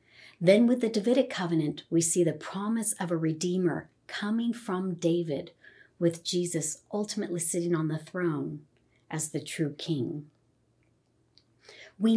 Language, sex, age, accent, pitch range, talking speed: English, female, 40-59, American, 150-195 Hz, 135 wpm